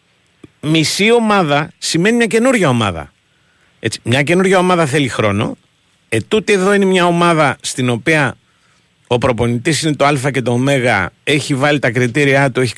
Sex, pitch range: male, 115-170 Hz